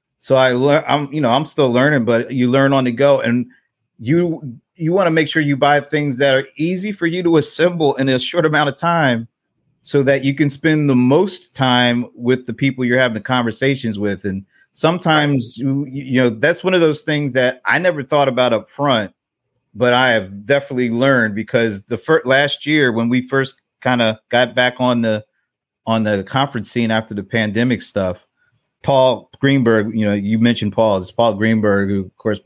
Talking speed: 205 wpm